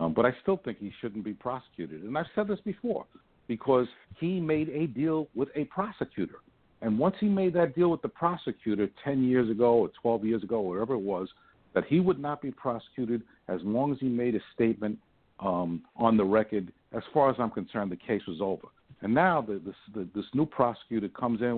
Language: English